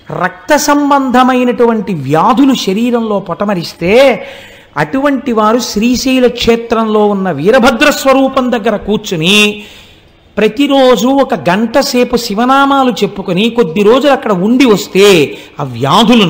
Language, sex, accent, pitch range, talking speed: Telugu, male, native, 200-255 Hz, 100 wpm